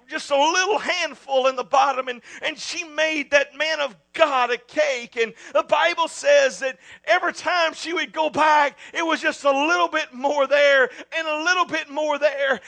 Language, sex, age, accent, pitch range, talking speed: English, male, 40-59, American, 250-310 Hz, 200 wpm